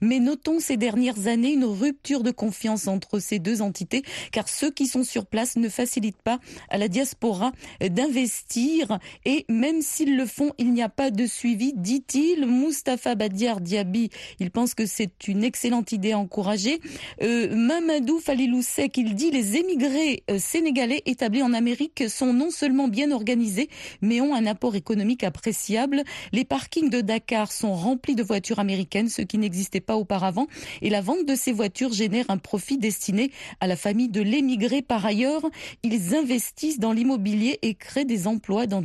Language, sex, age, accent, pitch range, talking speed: French, female, 40-59, French, 215-270 Hz, 175 wpm